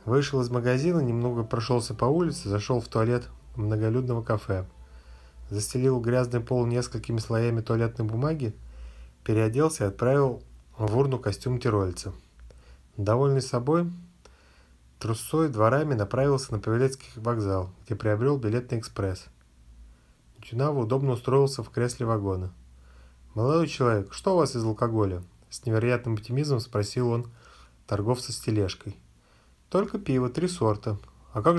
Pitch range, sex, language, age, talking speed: 105-130 Hz, male, Russian, 20-39, 125 wpm